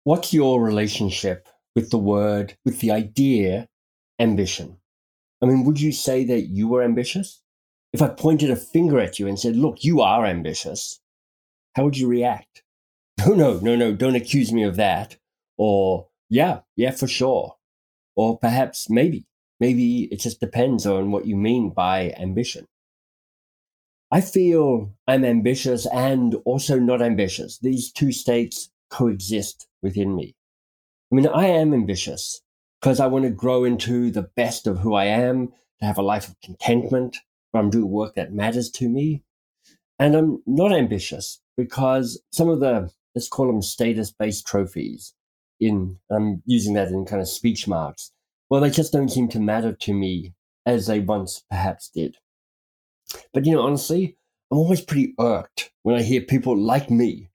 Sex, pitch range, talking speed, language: male, 100-130 Hz, 165 wpm, English